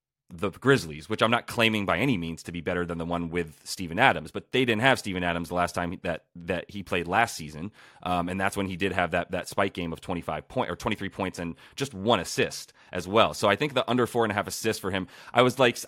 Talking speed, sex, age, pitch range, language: 270 wpm, male, 30-49, 90-115 Hz, English